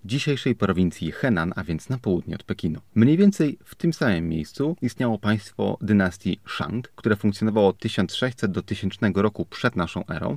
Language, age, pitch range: Polish, 30-49, 90-115 Hz